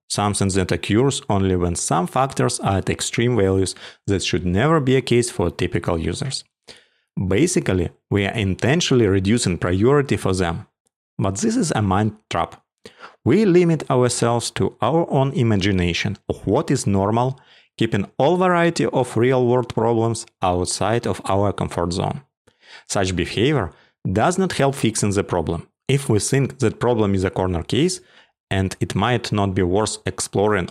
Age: 30-49